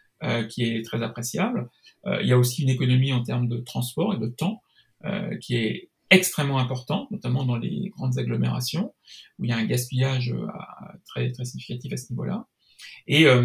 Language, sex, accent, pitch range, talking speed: French, male, French, 125-170 Hz, 175 wpm